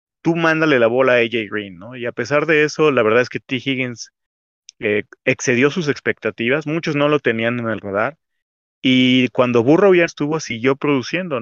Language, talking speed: Spanish, 195 wpm